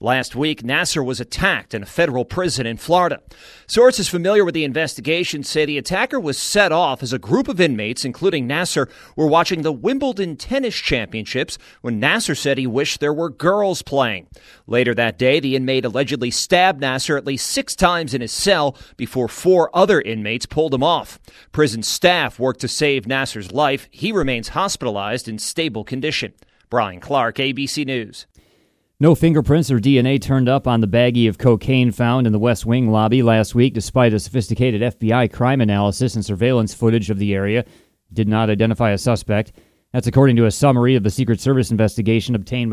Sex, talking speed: male, 185 wpm